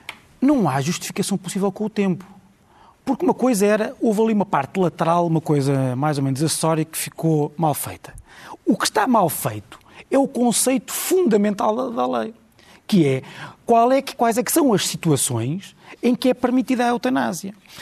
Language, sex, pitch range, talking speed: Portuguese, male, 175-255 Hz, 185 wpm